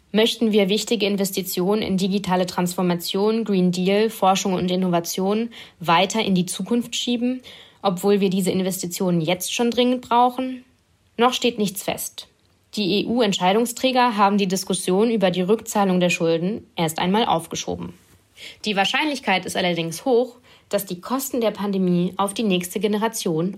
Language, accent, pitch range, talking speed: English, German, 180-230 Hz, 145 wpm